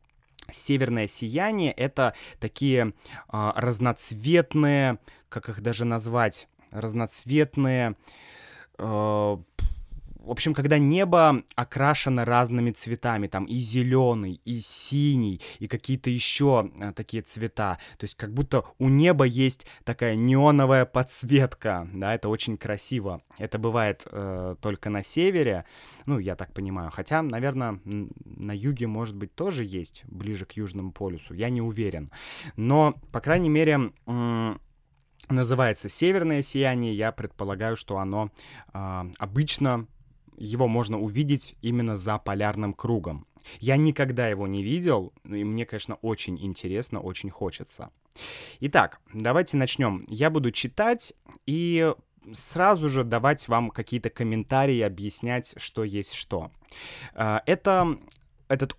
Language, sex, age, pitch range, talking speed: Russian, male, 20-39, 105-135 Hz, 120 wpm